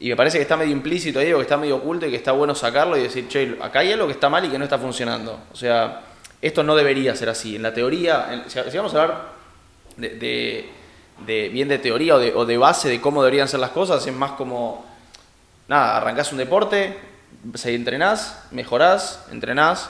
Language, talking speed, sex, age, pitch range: Spanish, 225 wpm, male, 20-39, 120-155 Hz